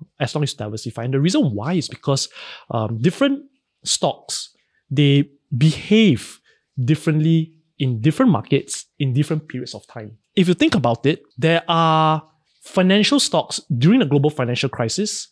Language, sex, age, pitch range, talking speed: English, male, 20-39, 135-170 Hz, 155 wpm